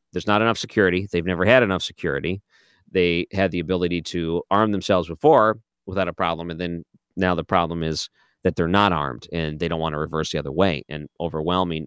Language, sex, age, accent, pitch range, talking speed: English, male, 40-59, American, 85-105 Hz, 205 wpm